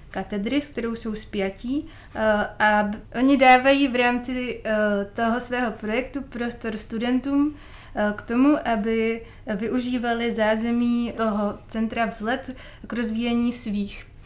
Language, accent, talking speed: Czech, native, 110 wpm